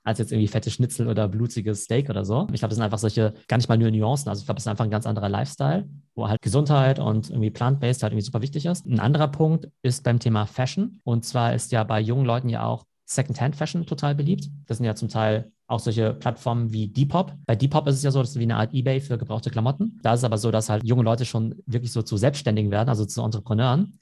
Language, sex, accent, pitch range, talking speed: German, male, German, 115-140 Hz, 255 wpm